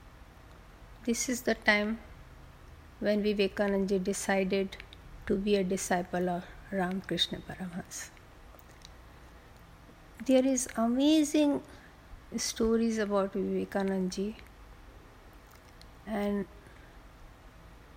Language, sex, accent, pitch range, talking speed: Hindi, female, native, 195-235 Hz, 70 wpm